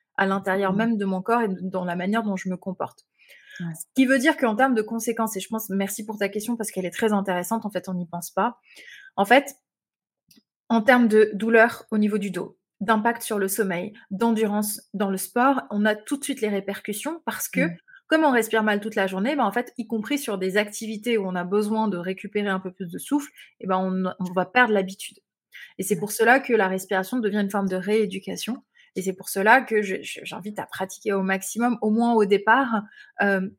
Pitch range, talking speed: 195-235 Hz, 230 wpm